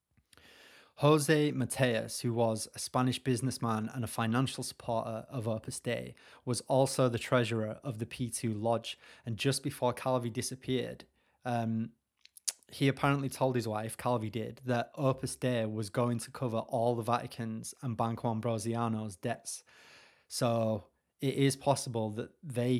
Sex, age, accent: male, 20-39, British